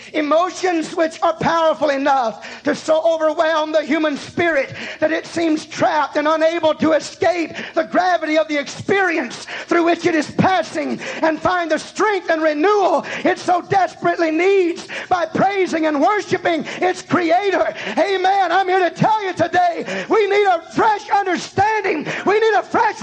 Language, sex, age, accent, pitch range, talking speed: English, male, 40-59, American, 310-385 Hz, 160 wpm